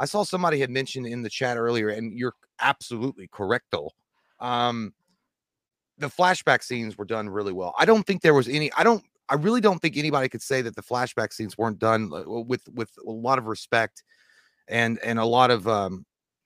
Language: English